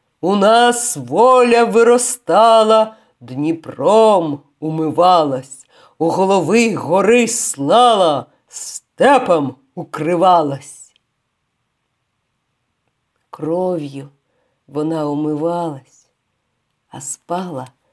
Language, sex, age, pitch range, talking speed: Ukrainian, female, 50-69, 150-190 Hz, 55 wpm